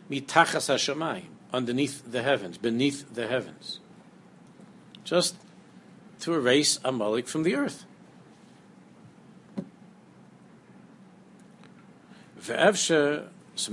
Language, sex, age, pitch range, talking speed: English, male, 60-79, 135-190 Hz, 70 wpm